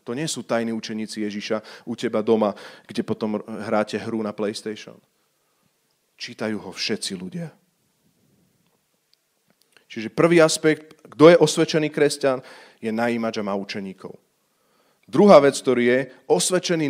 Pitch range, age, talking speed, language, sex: 115-165 Hz, 40-59, 130 wpm, Slovak, male